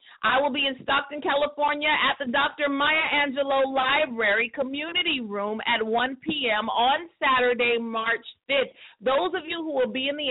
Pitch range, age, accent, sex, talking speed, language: 240-290 Hz, 40-59, American, female, 170 wpm, English